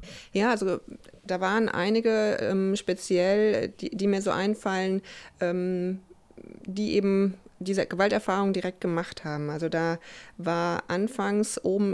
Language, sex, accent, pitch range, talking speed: German, female, German, 180-220 Hz, 125 wpm